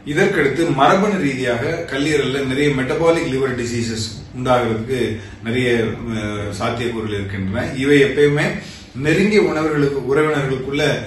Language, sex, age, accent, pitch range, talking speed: Tamil, male, 30-49, native, 115-150 Hz, 70 wpm